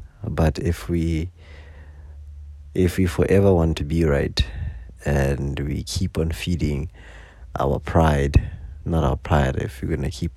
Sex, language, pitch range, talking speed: male, English, 75-90 Hz, 140 wpm